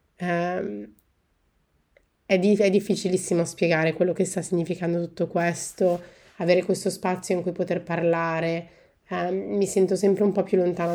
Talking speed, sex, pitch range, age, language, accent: 150 wpm, female, 165-190 Hz, 30-49, Italian, native